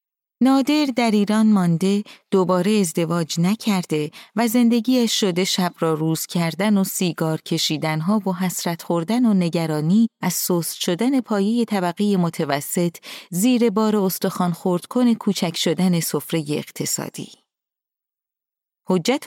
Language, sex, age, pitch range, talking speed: Persian, female, 30-49, 170-225 Hz, 120 wpm